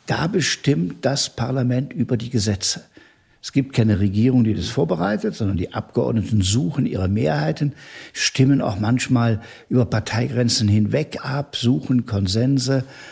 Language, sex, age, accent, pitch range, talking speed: German, male, 60-79, German, 105-135 Hz, 135 wpm